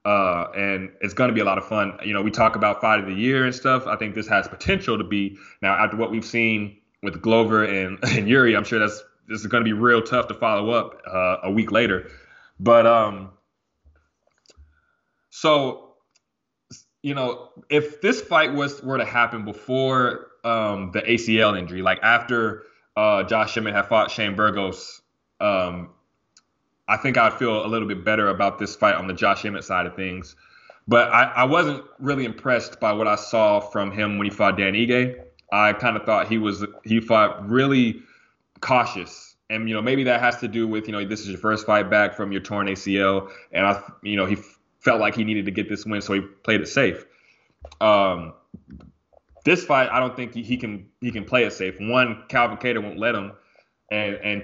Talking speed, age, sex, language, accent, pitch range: 205 wpm, 20-39, male, English, American, 100-120 Hz